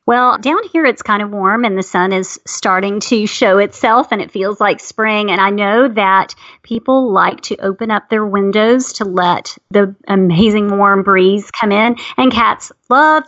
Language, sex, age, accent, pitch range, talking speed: English, female, 40-59, American, 205-265 Hz, 190 wpm